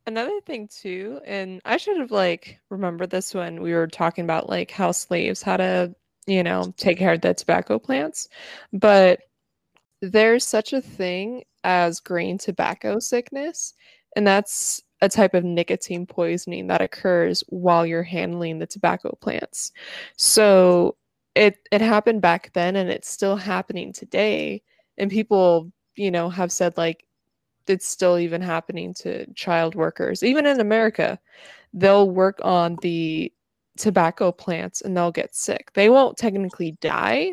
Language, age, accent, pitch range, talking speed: English, 20-39, American, 170-205 Hz, 150 wpm